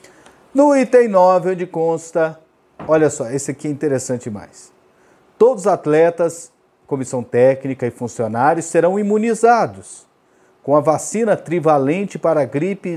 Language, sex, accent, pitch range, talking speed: Portuguese, male, Brazilian, 135-180 Hz, 130 wpm